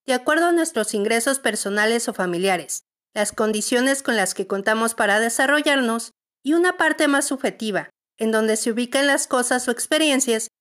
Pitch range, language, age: 220-280 Hz, Spanish, 50-69